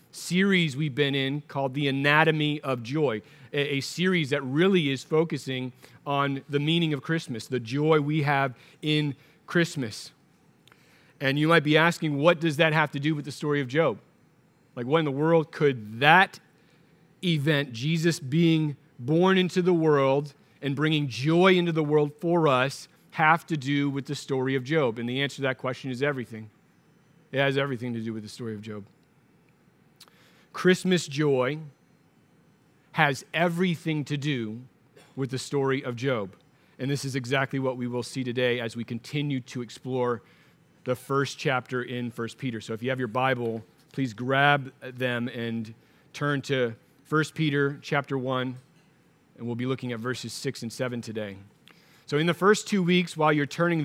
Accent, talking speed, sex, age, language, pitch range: American, 175 wpm, male, 40-59, English, 130-160 Hz